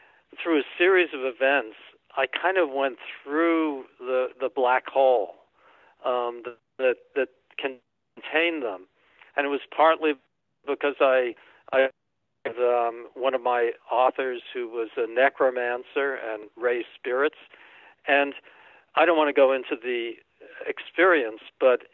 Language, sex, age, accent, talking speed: English, male, 60-79, American, 135 wpm